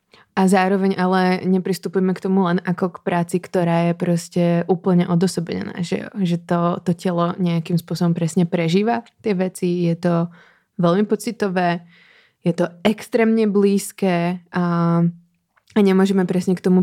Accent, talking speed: native, 145 wpm